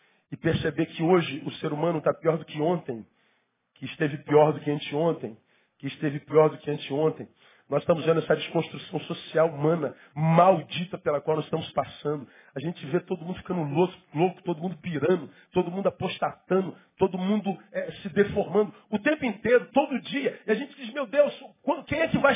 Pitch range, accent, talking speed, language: 165-260 Hz, Brazilian, 185 wpm, Portuguese